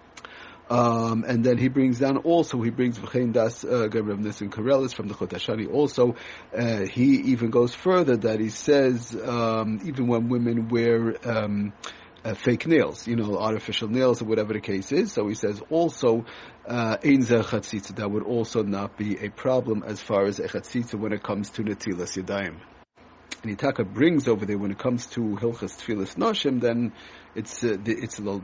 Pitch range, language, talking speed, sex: 105-130 Hz, English, 175 wpm, male